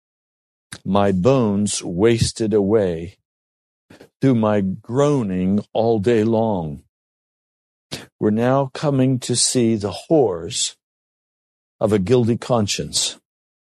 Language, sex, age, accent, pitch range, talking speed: English, male, 50-69, American, 115-170 Hz, 90 wpm